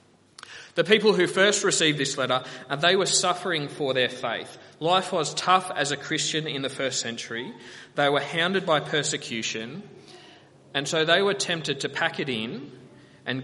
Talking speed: 170 wpm